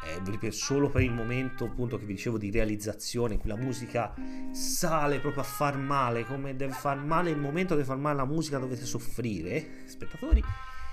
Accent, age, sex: native, 30-49, male